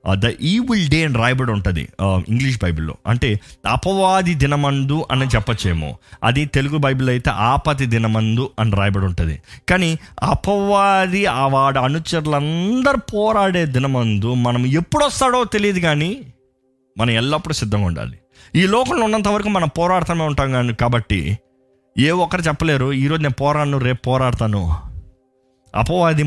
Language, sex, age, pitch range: Telugu, male, 20-39, 115-155 Hz